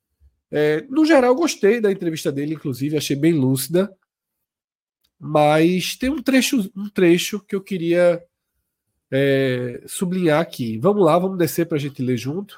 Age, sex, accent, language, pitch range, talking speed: 40-59, male, Brazilian, Portuguese, 150-210 Hz, 140 wpm